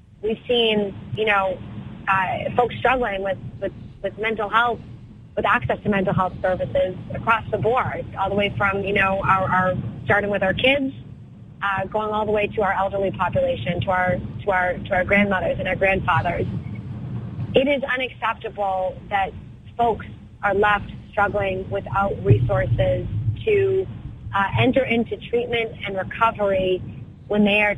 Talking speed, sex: 155 wpm, female